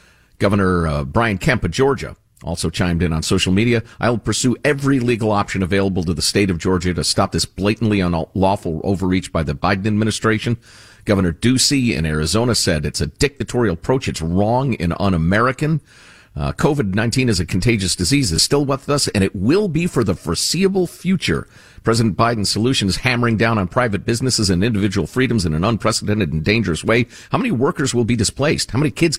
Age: 50-69